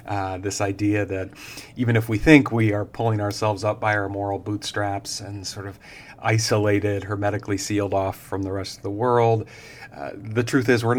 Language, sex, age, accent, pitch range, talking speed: English, male, 40-59, American, 100-120 Hz, 190 wpm